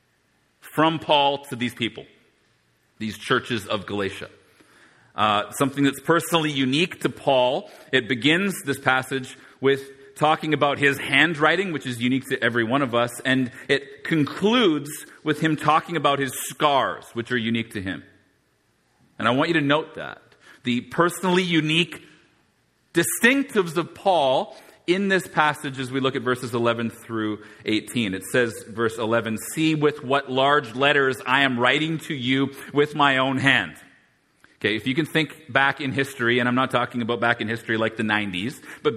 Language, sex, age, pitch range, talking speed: English, male, 40-59, 130-160 Hz, 170 wpm